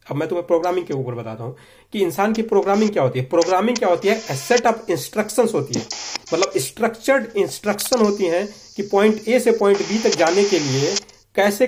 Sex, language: male, Hindi